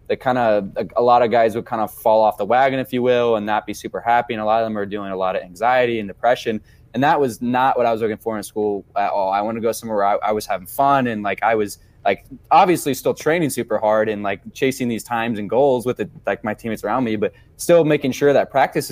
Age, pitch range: 20-39, 105-125 Hz